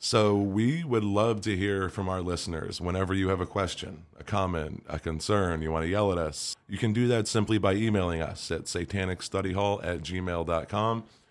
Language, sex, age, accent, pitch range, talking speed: English, male, 30-49, American, 85-105 Hz, 190 wpm